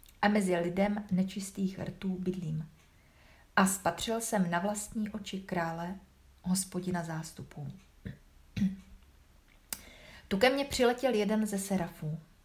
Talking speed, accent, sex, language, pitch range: 105 wpm, native, female, Czech, 170-205 Hz